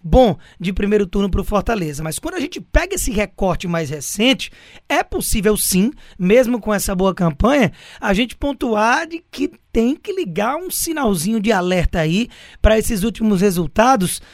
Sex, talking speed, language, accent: male, 165 wpm, Portuguese, Brazilian